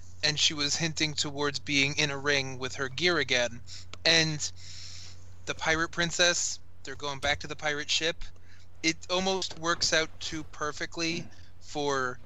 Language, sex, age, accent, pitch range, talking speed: English, male, 20-39, American, 120-150 Hz, 150 wpm